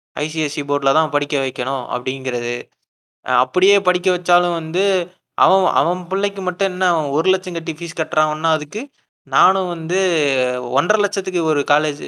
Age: 20-39